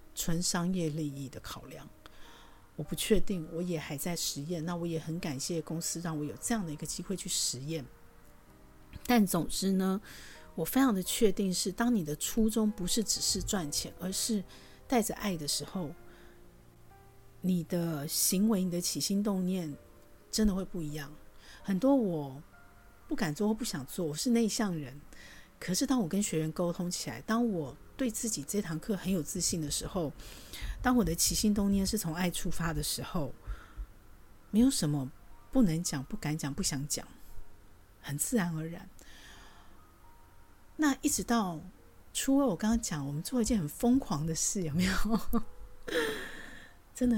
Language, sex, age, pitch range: Chinese, female, 50-69, 140-205 Hz